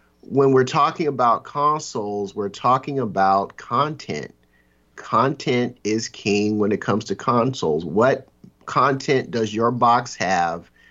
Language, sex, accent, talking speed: English, male, American, 125 wpm